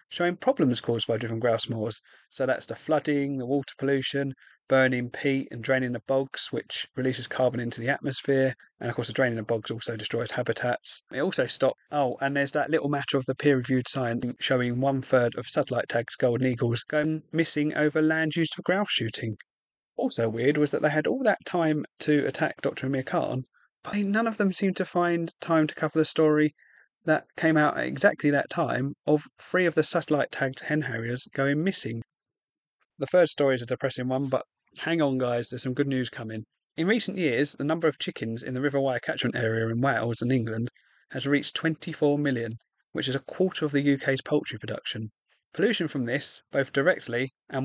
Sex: male